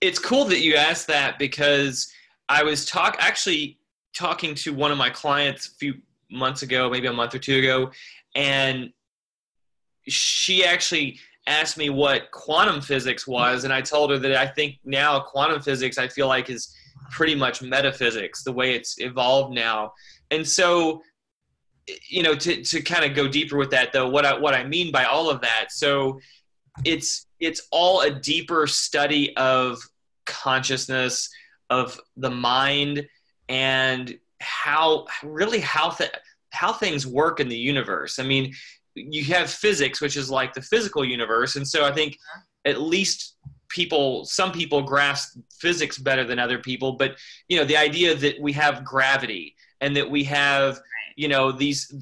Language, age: English, 20-39